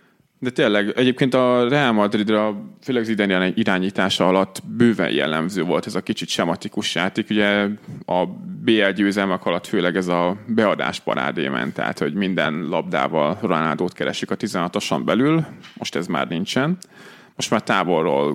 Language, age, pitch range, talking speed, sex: Hungarian, 20-39, 95-115 Hz, 150 wpm, male